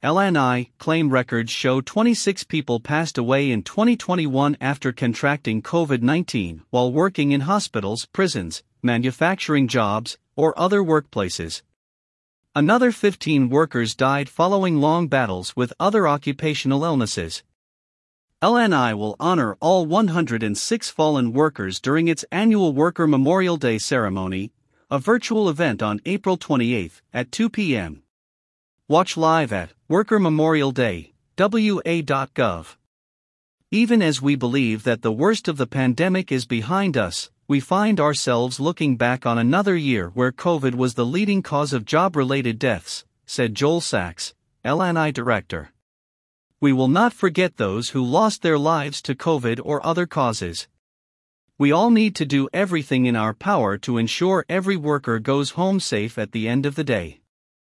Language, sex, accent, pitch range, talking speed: English, male, American, 120-170 Hz, 140 wpm